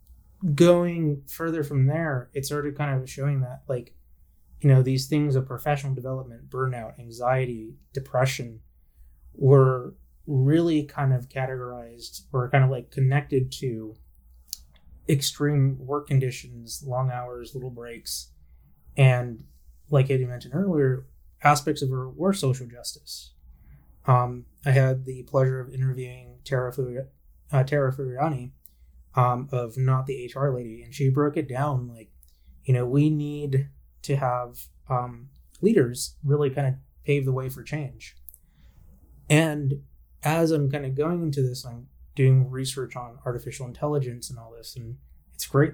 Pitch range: 110-140 Hz